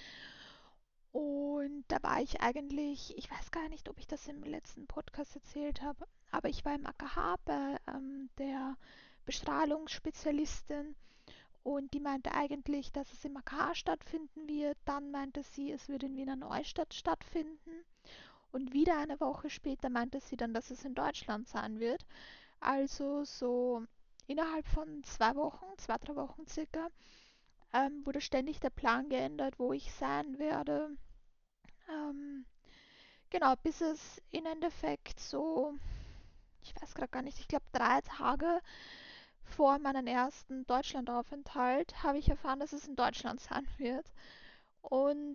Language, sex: German, female